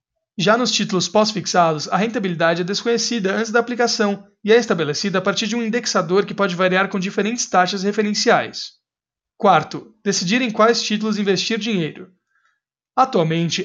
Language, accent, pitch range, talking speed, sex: Portuguese, Brazilian, 185-230 Hz, 150 wpm, male